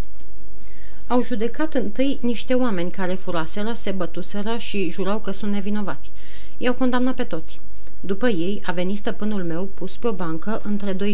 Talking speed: 160 wpm